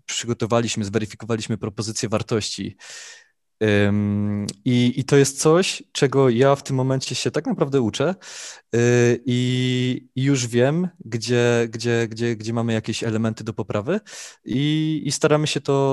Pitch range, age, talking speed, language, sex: 110-125 Hz, 20-39, 130 wpm, Polish, male